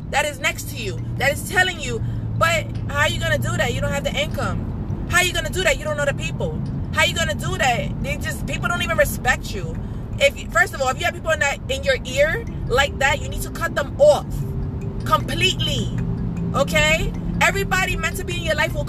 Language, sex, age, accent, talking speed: English, female, 20-39, American, 245 wpm